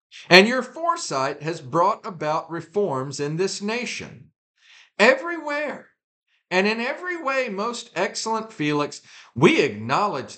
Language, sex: English, male